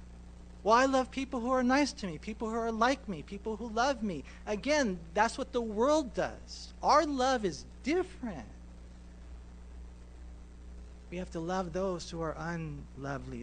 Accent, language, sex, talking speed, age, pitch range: American, English, male, 160 wpm, 40-59, 130-200 Hz